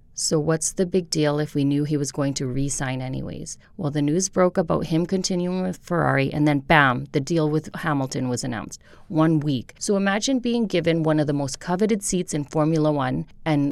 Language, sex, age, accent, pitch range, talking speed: English, female, 30-49, American, 145-180 Hz, 210 wpm